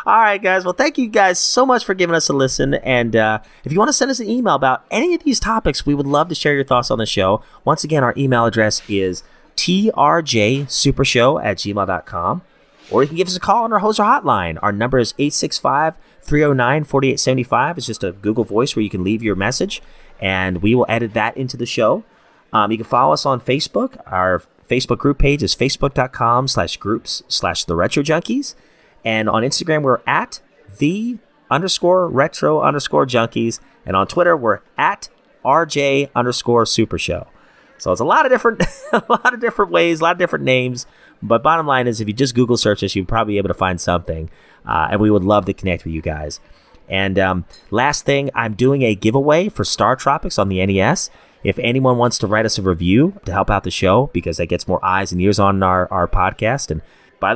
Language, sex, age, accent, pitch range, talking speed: English, male, 30-49, American, 100-155 Hz, 215 wpm